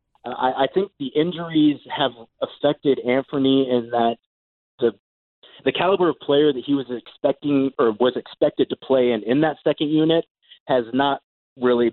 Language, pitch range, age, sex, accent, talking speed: English, 115-155 Hz, 30-49, male, American, 160 wpm